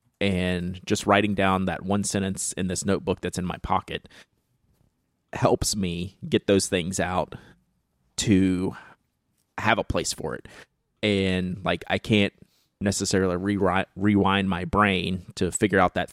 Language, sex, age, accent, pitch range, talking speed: English, male, 30-49, American, 90-110 Hz, 145 wpm